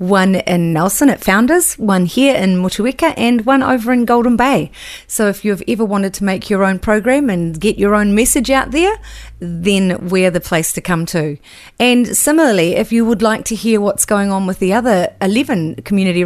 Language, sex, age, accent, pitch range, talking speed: English, female, 30-49, Australian, 180-225 Hz, 205 wpm